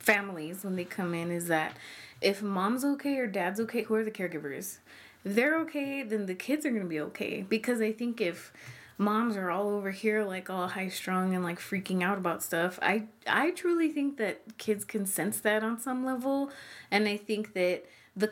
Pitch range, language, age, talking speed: 180-220 Hz, English, 20-39, 205 wpm